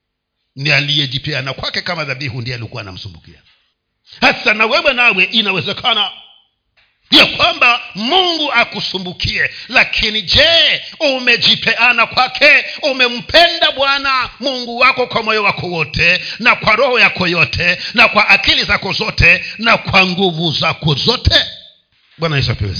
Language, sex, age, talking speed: Swahili, male, 50-69, 130 wpm